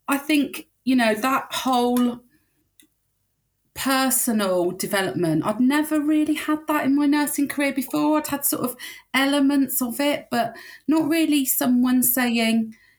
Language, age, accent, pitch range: English, 30-49, British, 180-255 Hz